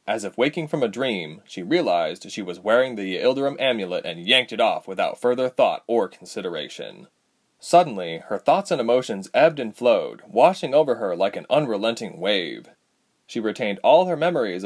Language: English